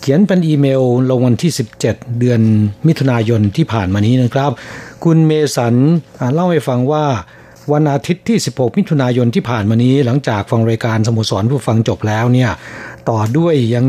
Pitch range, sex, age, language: 120-155 Hz, male, 60-79, Thai